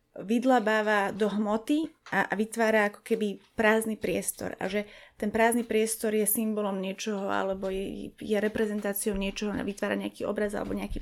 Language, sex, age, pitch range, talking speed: Slovak, female, 20-39, 205-230 Hz, 150 wpm